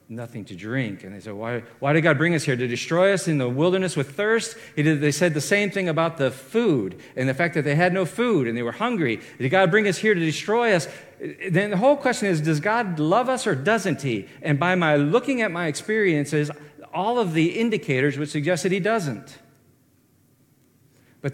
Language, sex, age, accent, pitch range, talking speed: English, male, 50-69, American, 130-175 Hz, 225 wpm